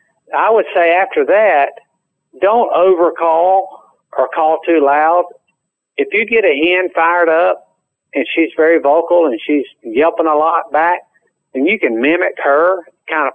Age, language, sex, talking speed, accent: 50-69, English, male, 155 wpm, American